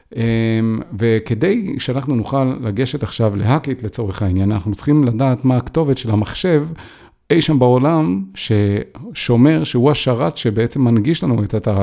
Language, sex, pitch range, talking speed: Hebrew, male, 110-150 Hz, 130 wpm